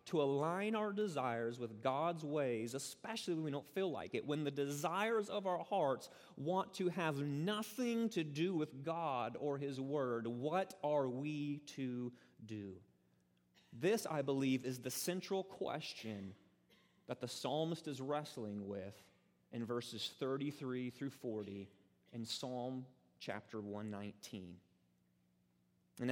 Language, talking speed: English, 135 wpm